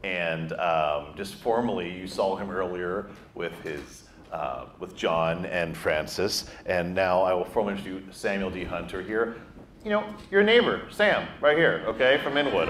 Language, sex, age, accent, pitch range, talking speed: English, male, 40-59, American, 95-130 Hz, 165 wpm